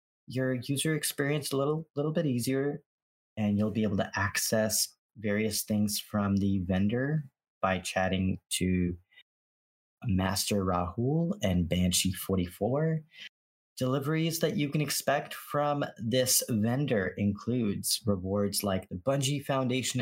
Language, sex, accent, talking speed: English, male, American, 120 wpm